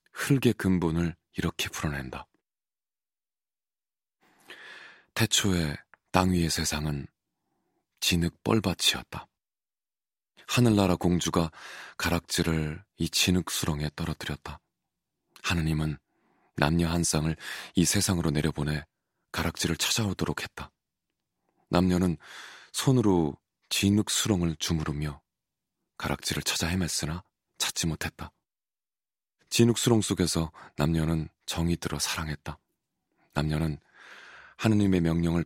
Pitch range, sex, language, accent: 80-90 Hz, male, Korean, native